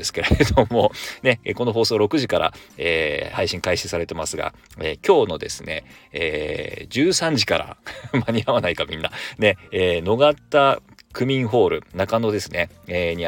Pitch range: 90-125 Hz